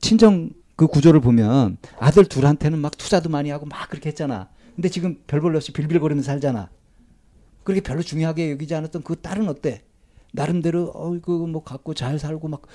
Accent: native